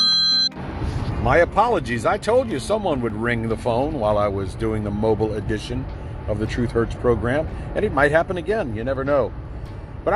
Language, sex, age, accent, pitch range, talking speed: English, male, 50-69, American, 110-160 Hz, 185 wpm